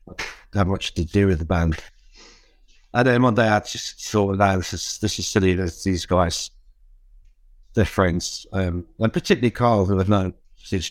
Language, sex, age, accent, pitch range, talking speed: English, male, 60-79, British, 90-105 Hz, 185 wpm